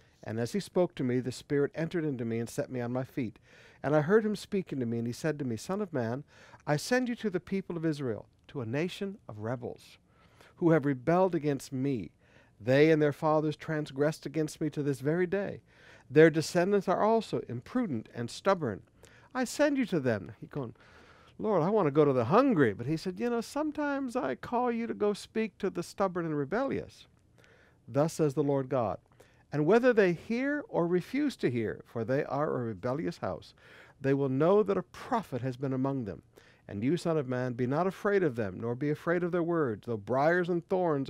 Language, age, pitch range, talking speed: English, 60-79, 125-185 Hz, 220 wpm